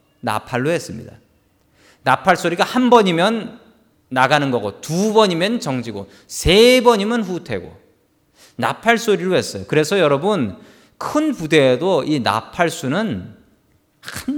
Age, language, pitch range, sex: 40-59, Korean, 140-215 Hz, male